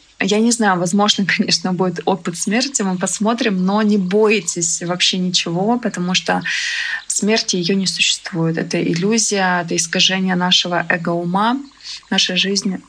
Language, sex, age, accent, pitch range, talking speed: Russian, female, 20-39, native, 185-215 Hz, 135 wpm